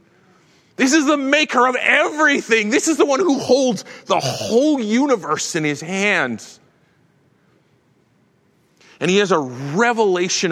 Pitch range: 150-215 Hz